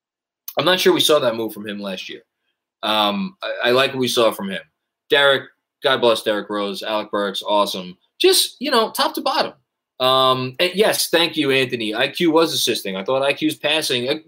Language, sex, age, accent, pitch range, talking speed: English, male, 20-39, American, 110-170 Hz, 205 wpm